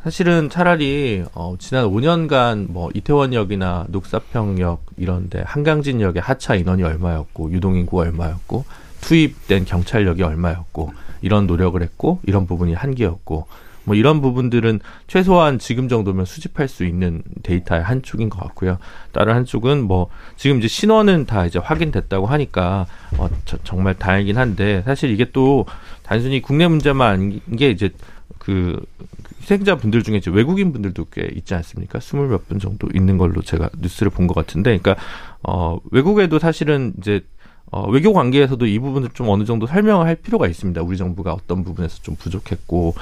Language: Korean